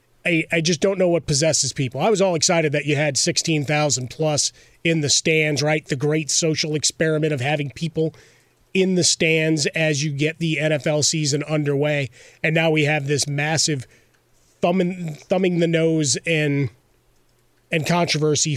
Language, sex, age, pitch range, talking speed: English, male, 30-49, 140-160 Hz, 160 wpm